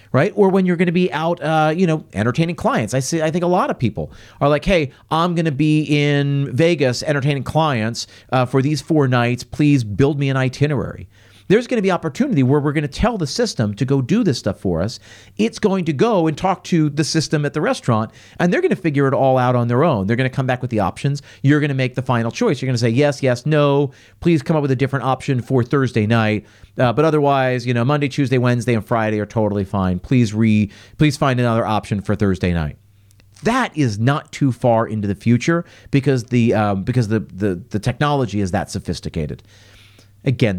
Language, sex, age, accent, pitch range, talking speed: English, male, 40-59, American, 110-150 Hz, 235 wpm